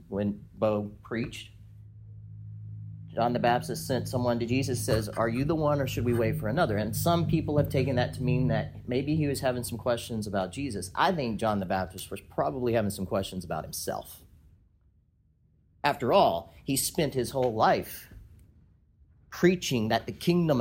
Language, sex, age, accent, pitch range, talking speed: English, male, 40-59, American, 100-135 Hz, 180 wpm